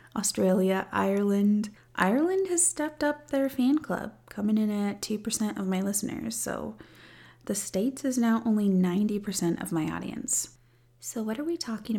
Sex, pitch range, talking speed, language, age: female, 170-220 Hz, 155 wpm, English, 30-49